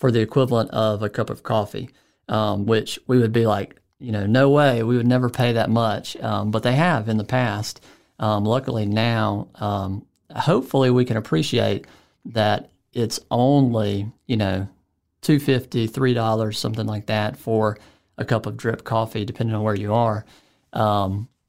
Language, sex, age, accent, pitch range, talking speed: English, male, 40-59, American, 105-130 Hz, 175 wpm